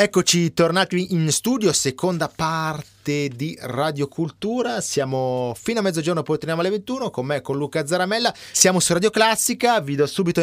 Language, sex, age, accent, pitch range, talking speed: Italian, male, 30-49, native, 125-175 Hz, 165 wpm